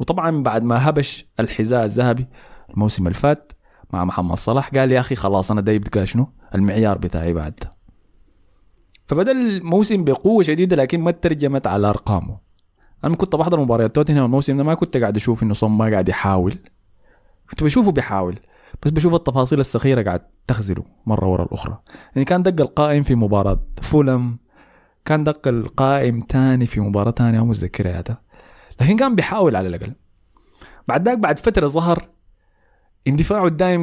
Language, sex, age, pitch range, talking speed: Arabic, male, 20-39, 95-140 Hz, 150 wpm